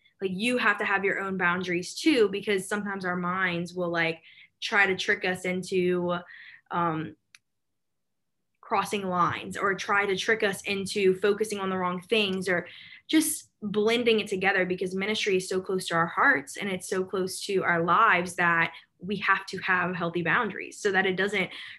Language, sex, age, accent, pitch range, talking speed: English, female, 10-29, American, 175-205 Hz, 180 wpm